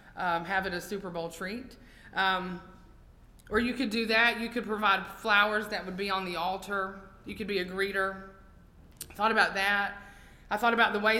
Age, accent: 30-49, American